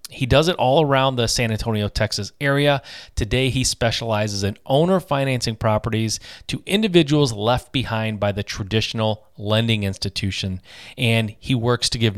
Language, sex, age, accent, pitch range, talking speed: English, male, 30-49, American, 105-135 Hz, 155 wpm